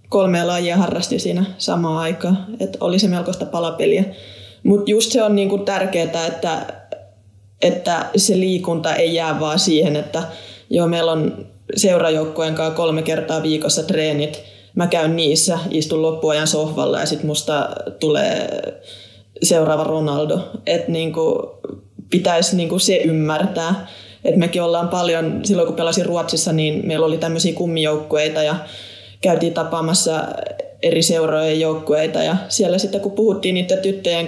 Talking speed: 135 wpm